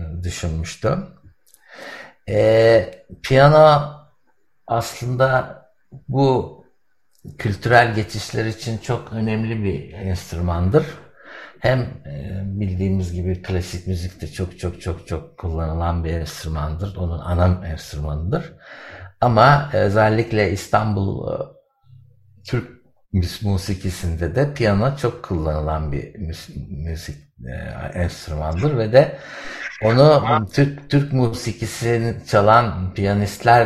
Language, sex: Turkish, male